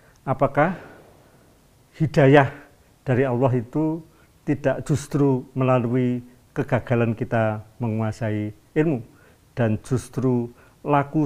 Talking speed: 80 wpm